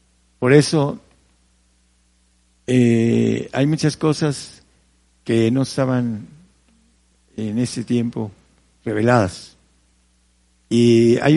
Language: Spanish